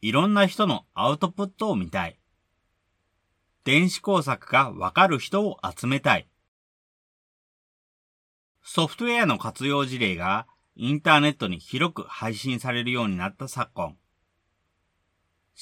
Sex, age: male, 40-59